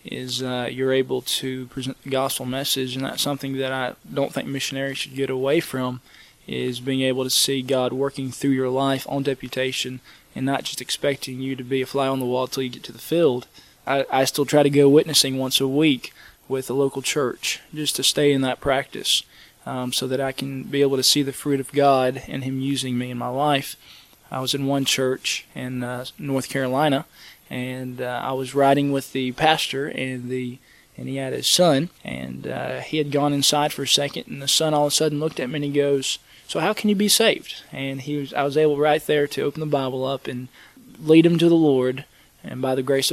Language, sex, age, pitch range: English, male, 20-39, 130-145 Hz